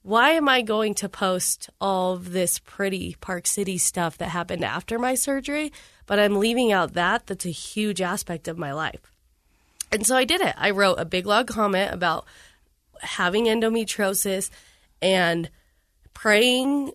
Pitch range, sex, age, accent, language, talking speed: 180-230 Hz, female, 20-39, American, English, 165 wpm